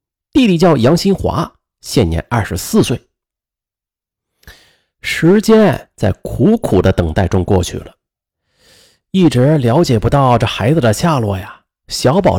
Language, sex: Chinese, male